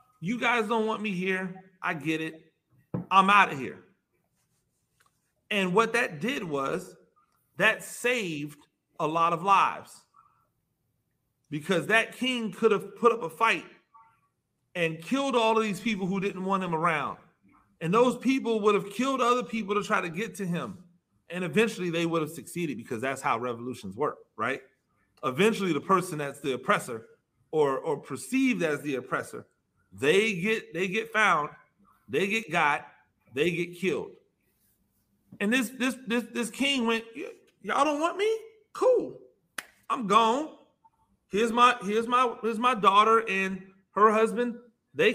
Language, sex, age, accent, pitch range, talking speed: English, male, 40-59, American, 170-235 Hz, 155 wpm